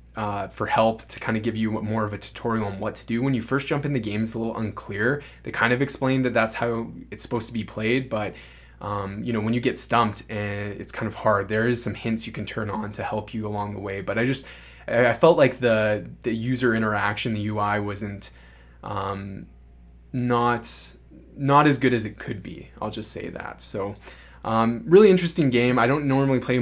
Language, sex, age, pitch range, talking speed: English, male, 20-39, 100-115 Hz, 230 wpm